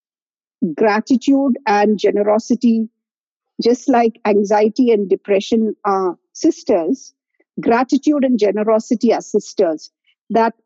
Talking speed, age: 90 wpm, 50-69